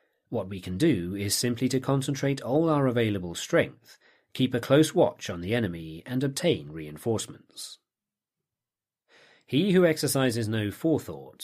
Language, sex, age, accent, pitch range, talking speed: English, male, 40-59, British, 100-145 Hz, 140 wpm